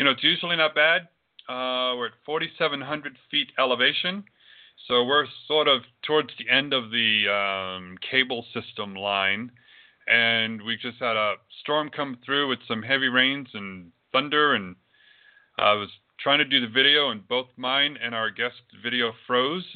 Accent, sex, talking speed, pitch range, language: American, male, 165 wpm, 110-140 Hz, English